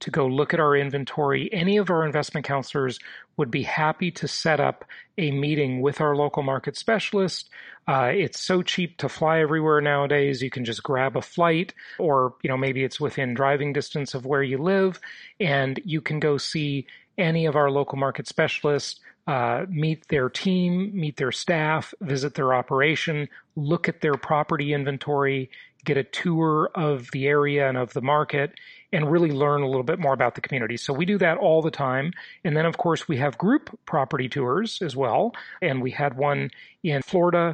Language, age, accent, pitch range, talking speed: English, 40-59, American, 135-160 Hz, 190 wpm